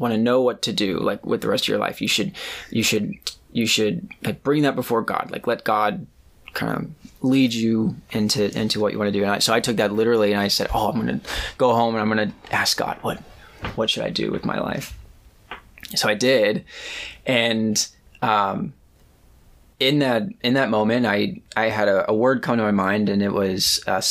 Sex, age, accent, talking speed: male, 20-39, American, 225 wpm